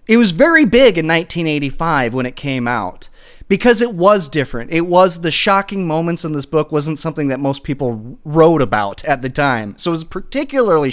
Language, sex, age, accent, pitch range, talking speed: English, male, 30-49, American, 160-240 Hz, 200 wpm